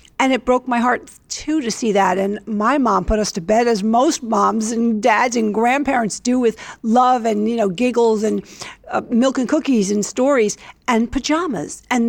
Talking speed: 200 wpm